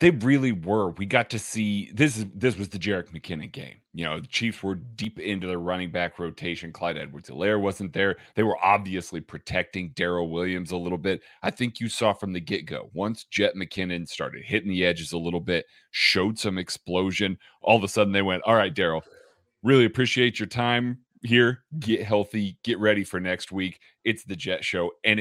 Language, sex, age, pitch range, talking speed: English, male, 30-49, 90-115 Hz, 200 wpm